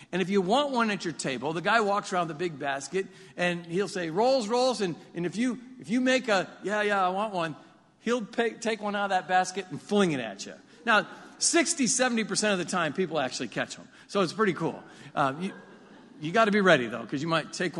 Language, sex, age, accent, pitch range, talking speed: English, male, 50-69, American, 135-210 Hz, 245 wpm